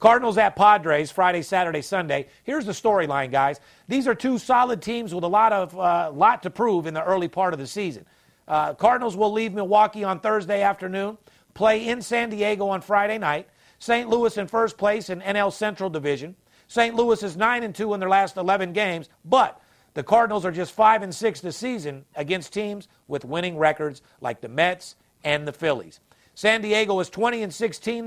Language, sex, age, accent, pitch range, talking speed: English, male, 50-69, American, 160-215 Hz, 190 wpm